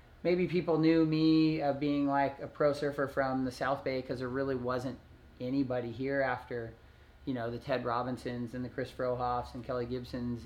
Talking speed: 190 wpm